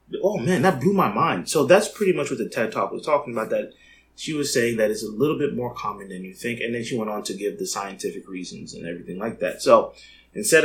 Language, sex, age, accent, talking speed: English, male, 30-49, American, 265 wpm